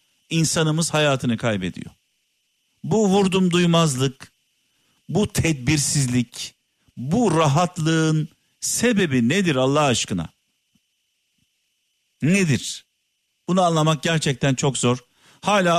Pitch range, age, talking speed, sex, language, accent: 125-170 Hz, 50-69, 80 wpm, male, Turkish, native